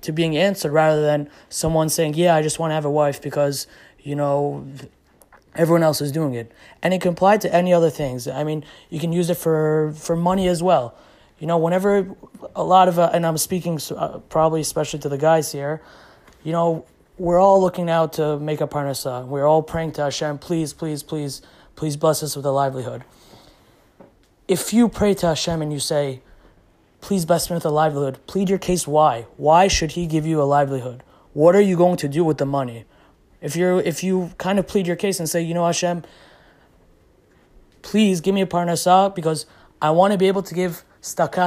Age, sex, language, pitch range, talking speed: 20-39, male, English, 150-180 Hz, 210 wpm